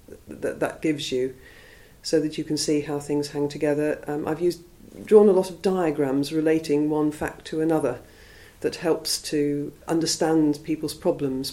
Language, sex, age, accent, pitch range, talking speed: English, female, 50-69, British, 140-165 Hz, 165 wpm